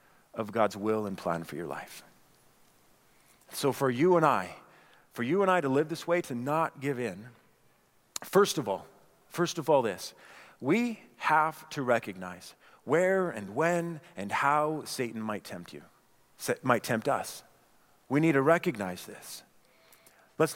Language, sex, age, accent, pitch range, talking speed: English, male, 40-59, American, 135-200 Hz, 160 wpm